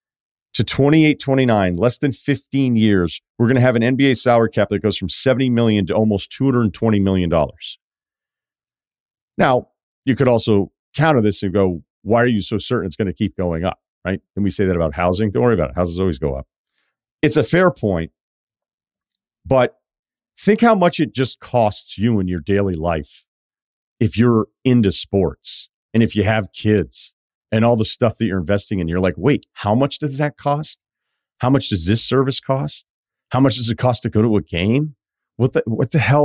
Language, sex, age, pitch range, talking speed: English, male, 40-59, 95-130 Hz, 195 wpm